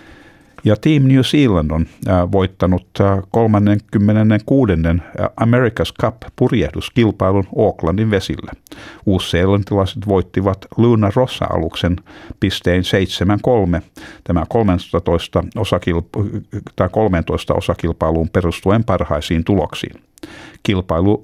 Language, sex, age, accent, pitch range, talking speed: Finnish, male, 50-69, native, 90-105 Hz, 80 wpm